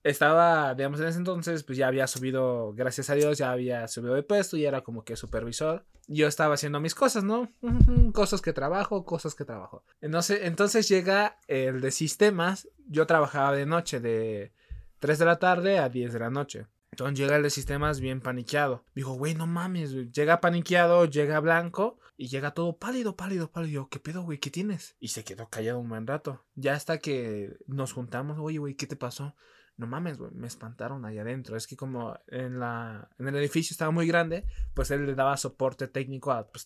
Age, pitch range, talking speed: 20-39, 130-165 Hz, 205 wpm